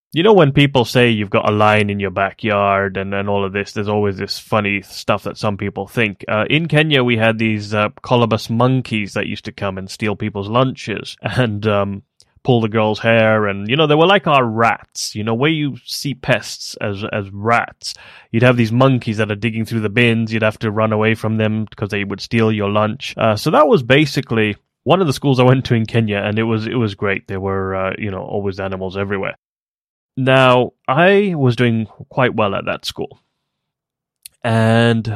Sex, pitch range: male, 100-125 Hz